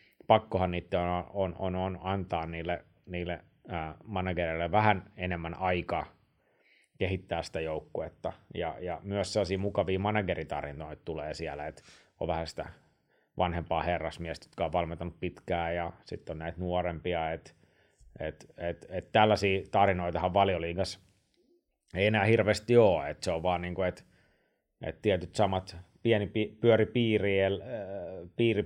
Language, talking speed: Finnish, 135 wpm